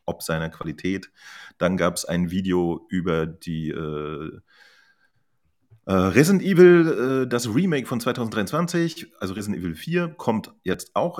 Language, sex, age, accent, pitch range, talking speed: German, male, 30-49, German, 90-120 Hz, 140 wpm